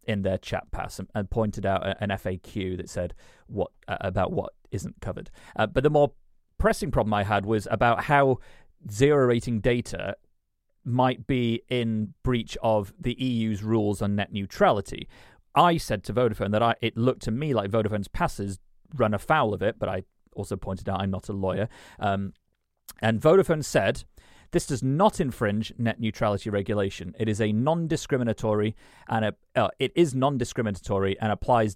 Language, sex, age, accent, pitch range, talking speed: English, male, 30-49, British, 105-130 Hz, 170 wpm